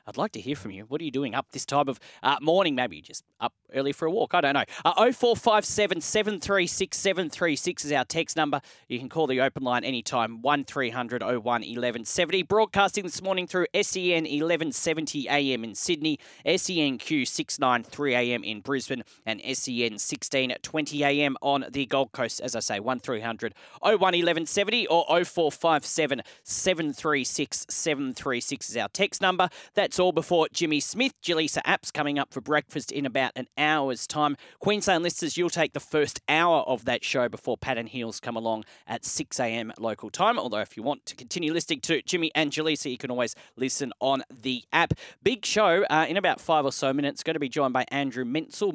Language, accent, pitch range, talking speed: English, Australian, 130-170 Hz, 190 wpm